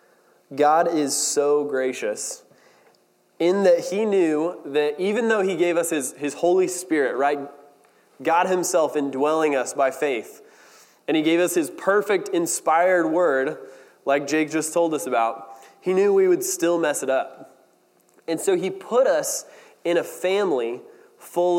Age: 20-39